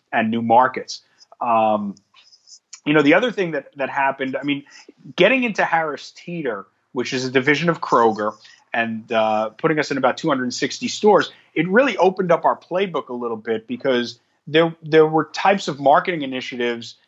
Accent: American